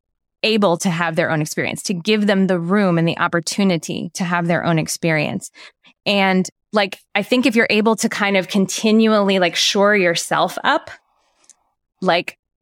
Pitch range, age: 180-225 Hz, 20-39